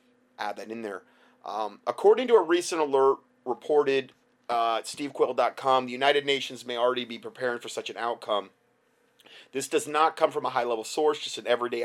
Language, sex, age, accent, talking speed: English, male, 30-49, American, 180 wpm